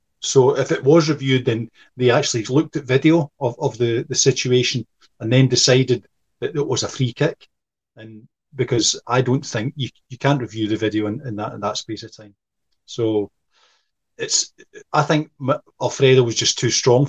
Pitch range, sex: 110-140 Hz, male